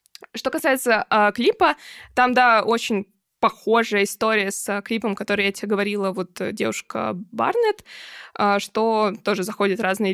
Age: 20-39